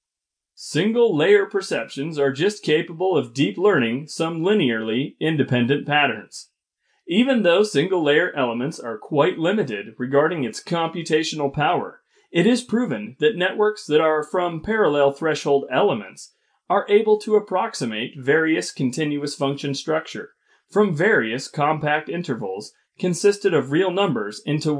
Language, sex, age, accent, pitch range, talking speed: English, male, 30-49, American, 140-205 Hz, 125 wpm